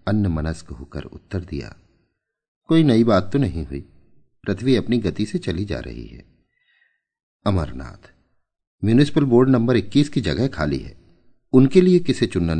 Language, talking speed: Hindi, 150 wpm